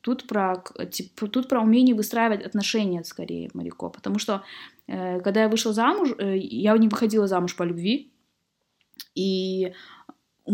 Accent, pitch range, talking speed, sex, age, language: native, 195-260 Hz, 155 wpm, female, 20-39, Russian